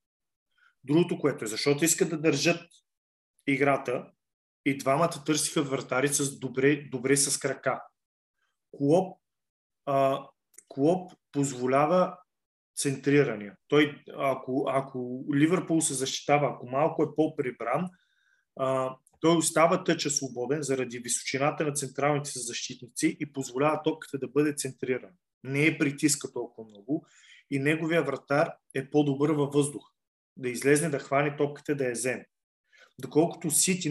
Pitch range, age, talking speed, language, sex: 135-160 Hz, 20-39, 125 wpm, Bulgarian, male